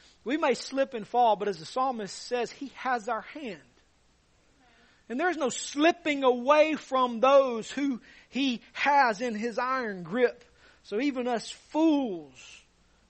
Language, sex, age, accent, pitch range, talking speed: English, male, 40-59, American, 165-205 Hz, 145 wpm